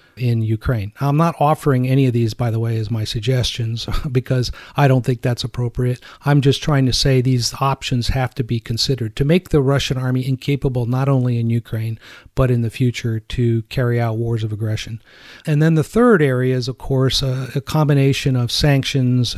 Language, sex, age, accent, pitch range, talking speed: English, male, 40-59, American, 120-140 Hz, 200 wpm